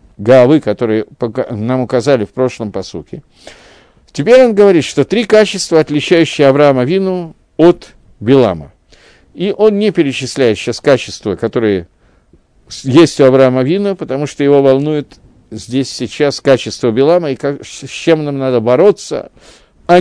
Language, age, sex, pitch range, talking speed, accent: Russian, 50-69, male, 115-160 Hz, 135 wpm, native